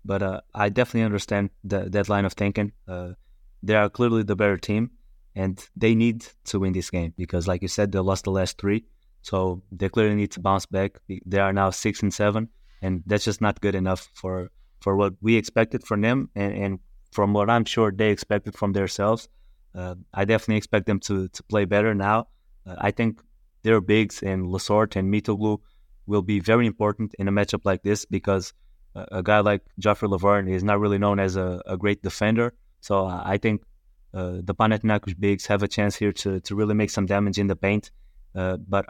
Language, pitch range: English, 95-105 Hz